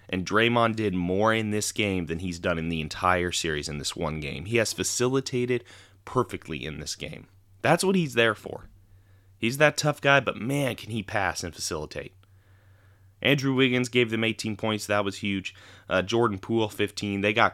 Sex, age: male, 20-39